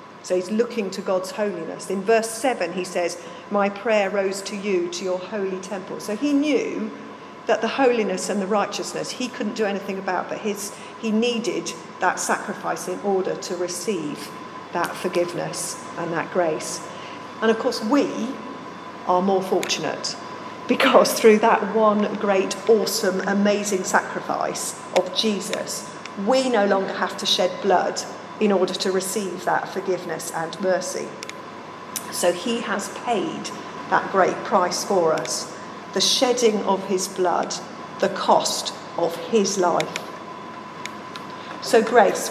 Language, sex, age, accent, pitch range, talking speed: English, female, 40-59, British, 190-230 Hz, 145 wpm